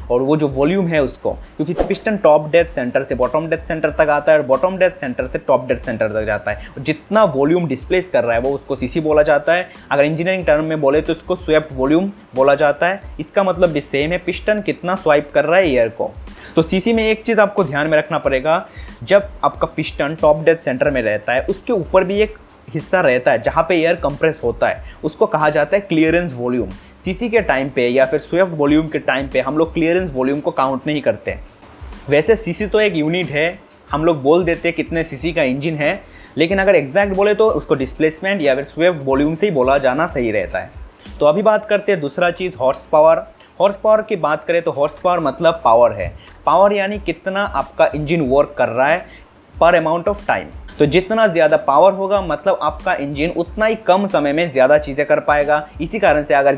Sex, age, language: male, 20-39, Hindi